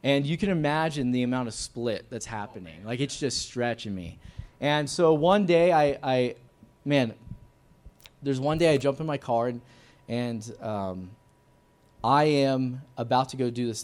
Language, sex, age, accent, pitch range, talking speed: English, male, 20-39, American, 110-140 Hz, 175 wpm